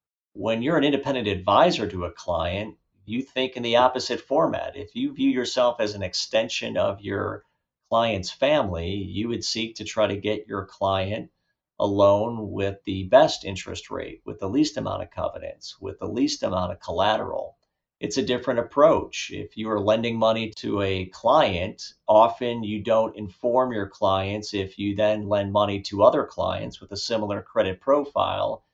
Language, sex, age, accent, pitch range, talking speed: English, male, 50-69, American, 95-115 Hz, 175 wpm